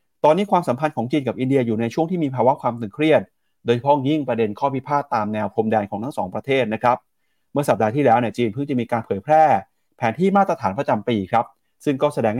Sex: male